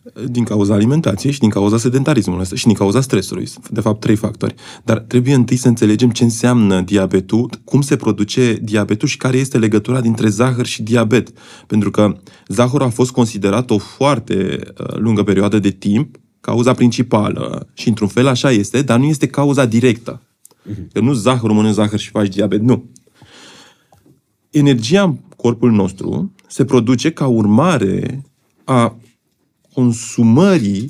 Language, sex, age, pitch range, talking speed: Romanian, male, 20-39, 105-140 Hz, 150 wpm